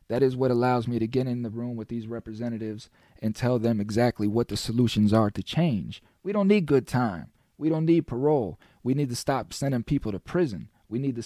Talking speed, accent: 230 wpm, American